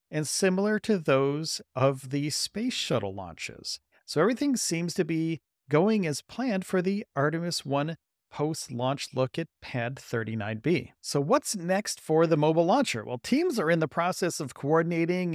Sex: male